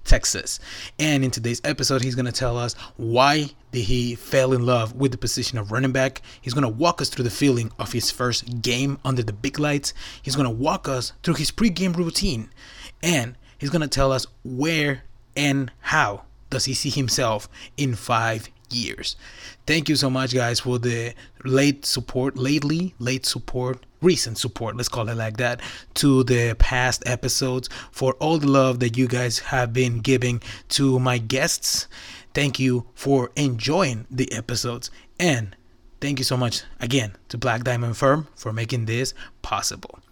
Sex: male